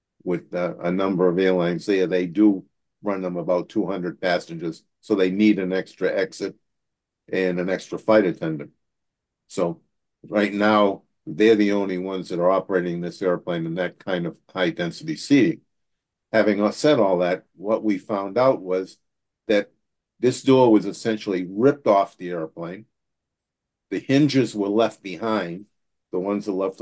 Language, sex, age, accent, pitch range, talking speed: English, male, 50-69, American, 95-110 Hz, 160 wpm